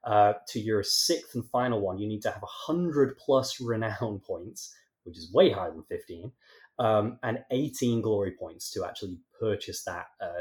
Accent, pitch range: British, 100-125 Hz